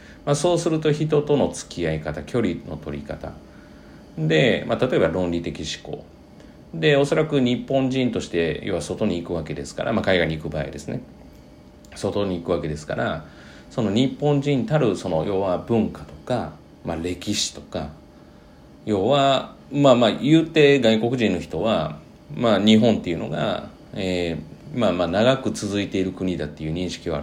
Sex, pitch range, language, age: male, 80-120 Hz, Japanese, 40-59